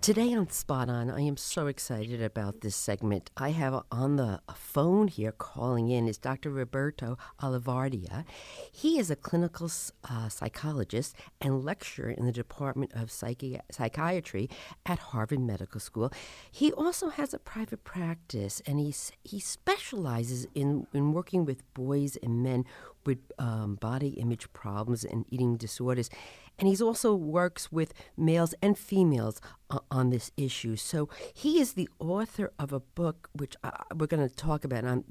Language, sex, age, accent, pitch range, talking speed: English, female, 50-69, American, 120-175 Hz, 160 wpm